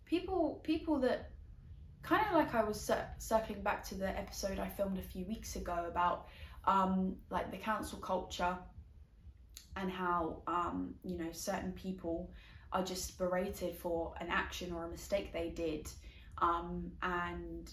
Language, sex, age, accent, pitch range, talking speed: English, female, 10-29, British, 165-195 Hz, 150 wpm